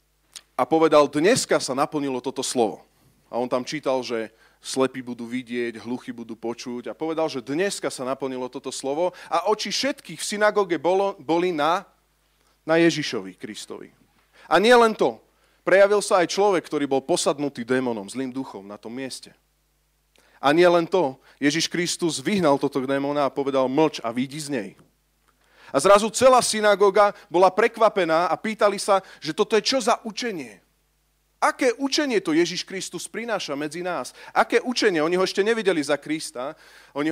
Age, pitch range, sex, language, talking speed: 30-49, 140-205 Hz, male, Slovak, 160 wpm